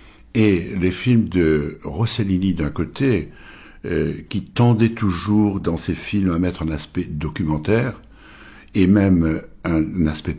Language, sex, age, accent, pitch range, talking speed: French, male, 60-79, French, 75-100 Hz, 140 wpm